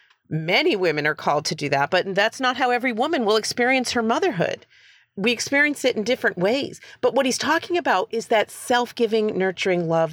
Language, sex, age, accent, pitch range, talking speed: English, female, 40-59, American, 180-240 Hz, 195 wpm